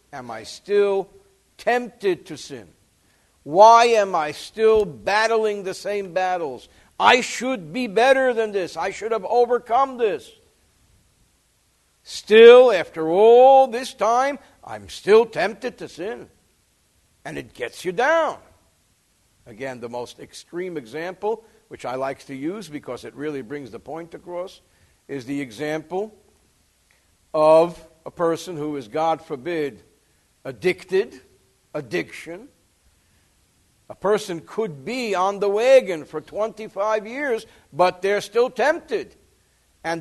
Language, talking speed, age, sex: English, 125 wpm, 60-79, male